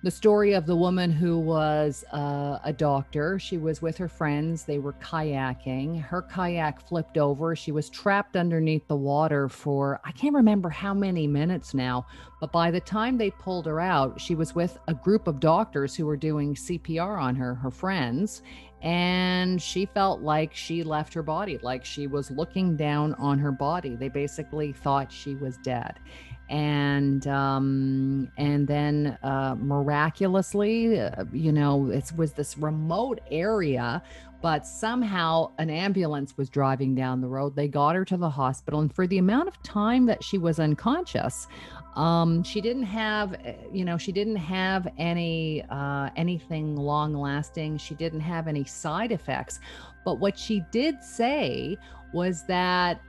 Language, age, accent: English, 50-69, American